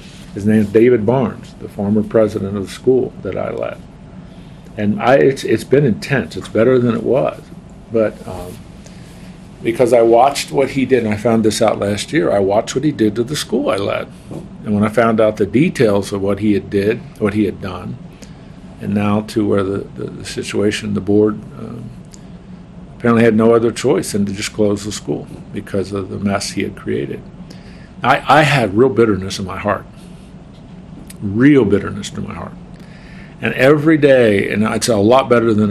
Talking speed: 195 wpm